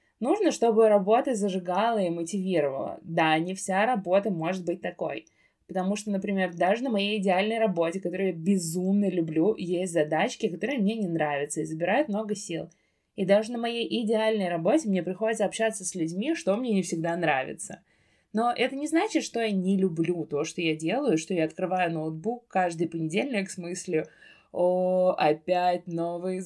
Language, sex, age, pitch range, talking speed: Russian, female, 20-39, 165-210 Hz, 170 wpm